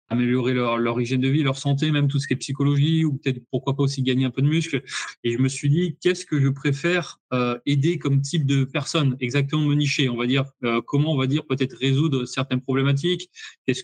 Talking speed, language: 240 wpm, French